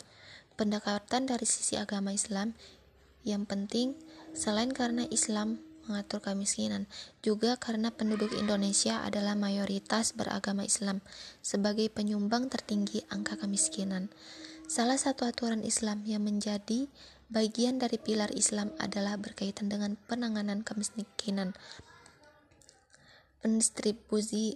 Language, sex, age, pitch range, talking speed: Indonesian, female, 20-39, 205-230 Hz, 100 wpm